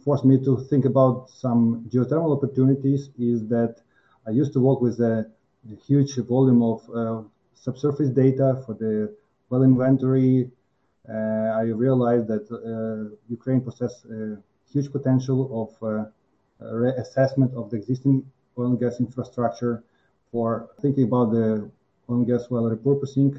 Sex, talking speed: male, 145 wpm